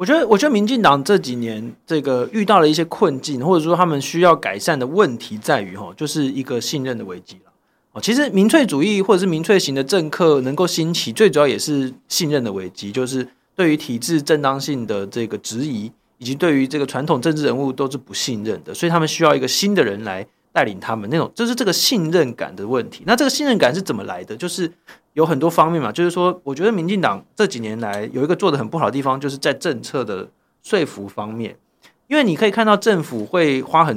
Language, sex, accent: Chinese, male, native